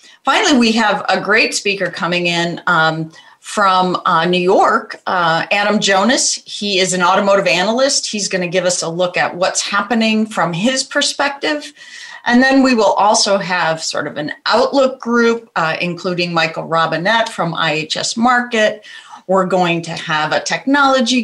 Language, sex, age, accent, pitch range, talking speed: English, female, 40-59, American, 180-245 Hz, 165 wpm